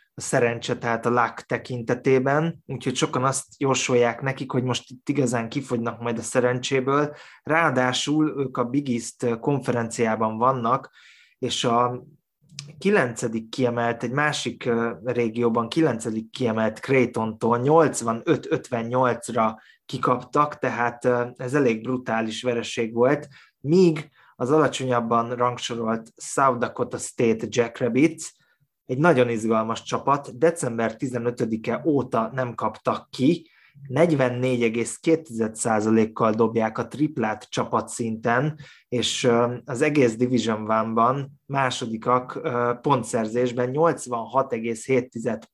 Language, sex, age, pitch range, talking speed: Hungarian, male, 20-39, 115-135 Hz, 100 wpm